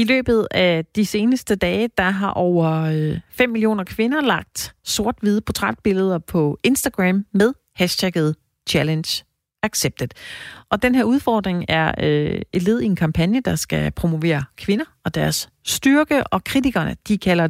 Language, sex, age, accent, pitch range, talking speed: Danish, female, 30-49, native, 165-215 Hz, 145 wpm